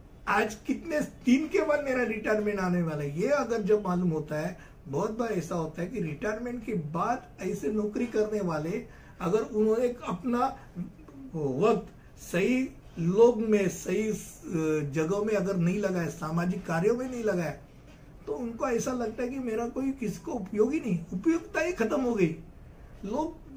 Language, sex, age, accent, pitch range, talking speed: Hindi, male, 60-79, native, 180-240 Hz, 165 wpm